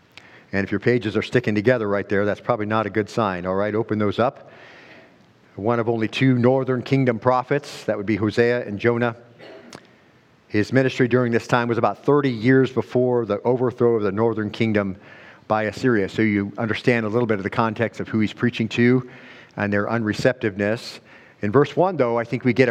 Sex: male